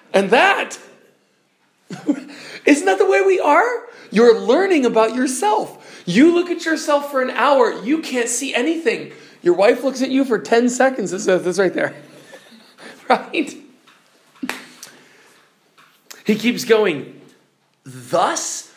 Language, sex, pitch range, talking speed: English, male, 180-275 Hz, 130 wpm